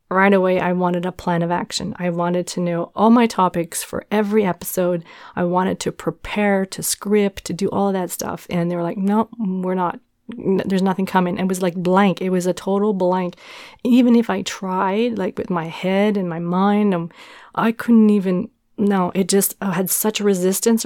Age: 30-49